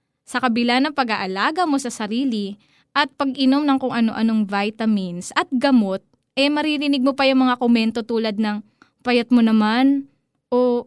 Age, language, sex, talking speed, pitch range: 20-39, Filipino, female, 155 wpm, 215-270 Hz